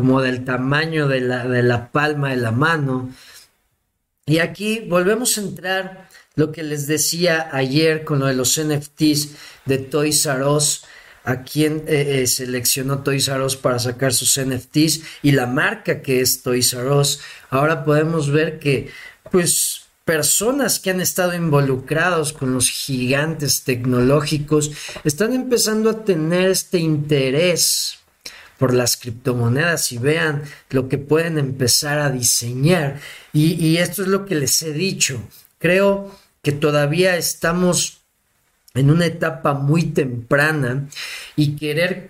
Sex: male